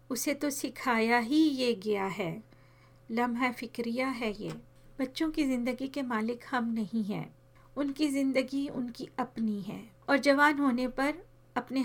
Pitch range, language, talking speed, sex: 220-255 Hz, Hindi, 145 wpm, female